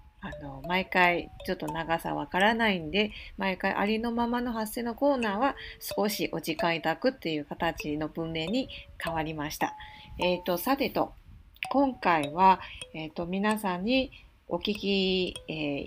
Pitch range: 165-240 Hz